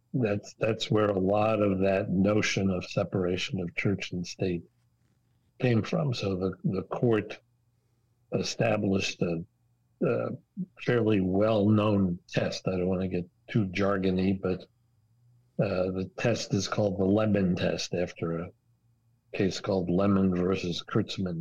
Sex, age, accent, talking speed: male, 60-79, American, 135 wpm